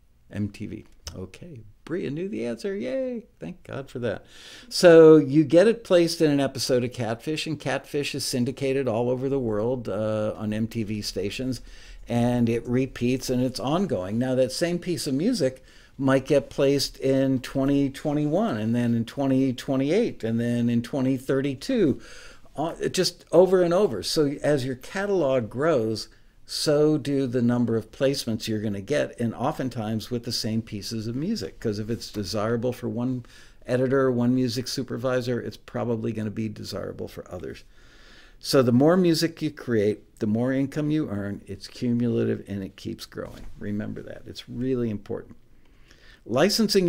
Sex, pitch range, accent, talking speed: male, 110-140 Hz, American, 165 wpm